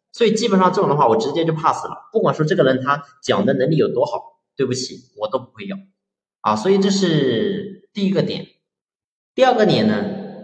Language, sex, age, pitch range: Chinese, male, 30-49, 175-225 Hz